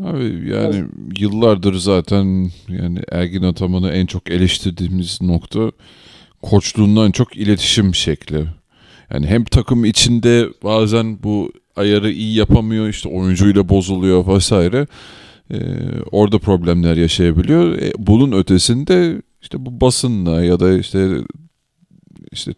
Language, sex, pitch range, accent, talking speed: Turkish, male, 90-120 Hz, native, 110 wpm